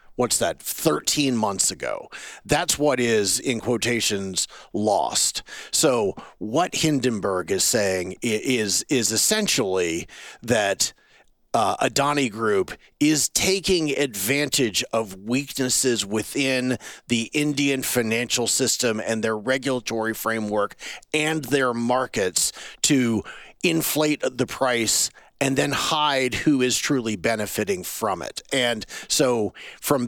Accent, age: American, 40-59